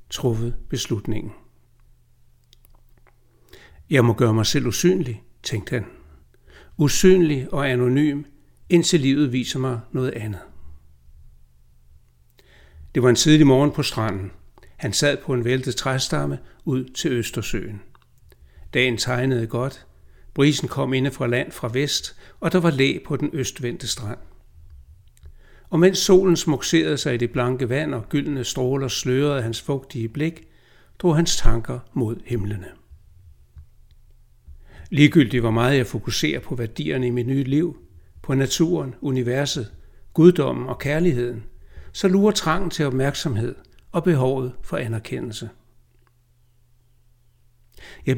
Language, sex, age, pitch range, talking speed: Danish, male, 60-79, 115-145 Hz, 125 wpm